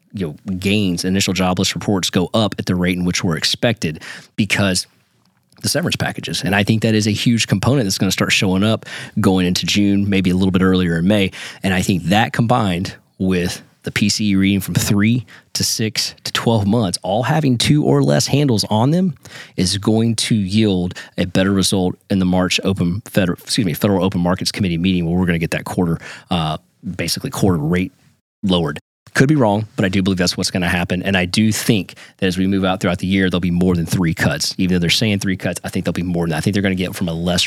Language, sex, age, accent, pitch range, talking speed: English, male, 30-49, American, 90-110 Hz, 240 wpm